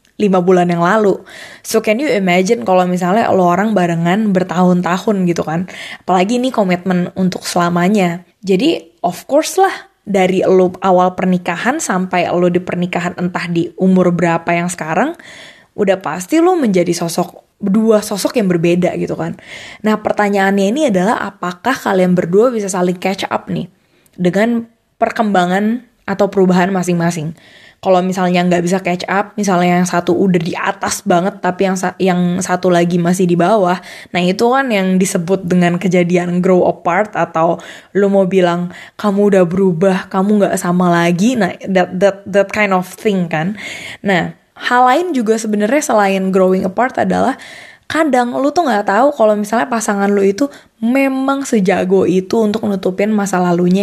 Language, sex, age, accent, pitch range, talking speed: Indonesian, female, 20-39, native, 180-210 Hz, 160 wpm